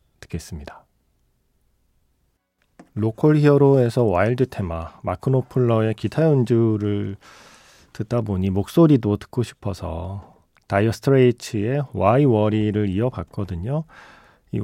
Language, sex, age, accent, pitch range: Korean, male, 40-59, native, 100-135 Hz